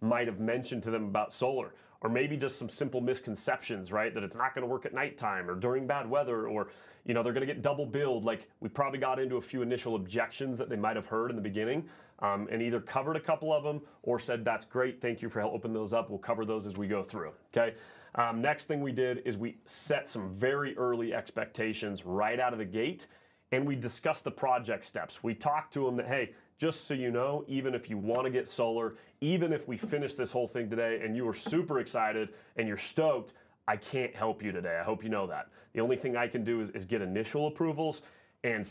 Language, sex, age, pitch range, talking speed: English, male, 30-49, 115-140 Hz, 235 wpm